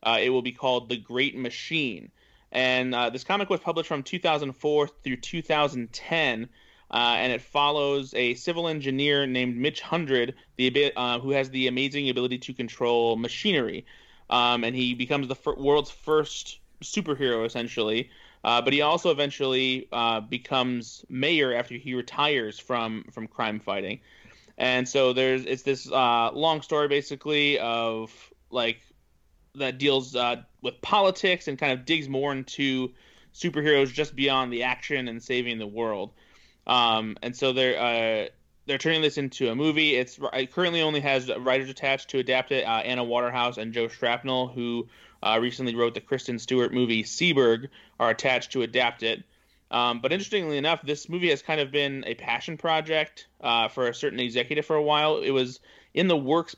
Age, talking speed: 20-39, 170 wpm